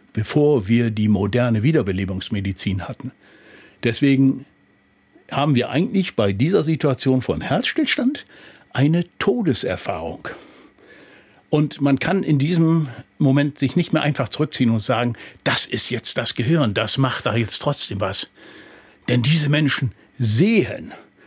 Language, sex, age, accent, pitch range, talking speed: German, male, 60-79, German, 115-155 Hz, 125 wpm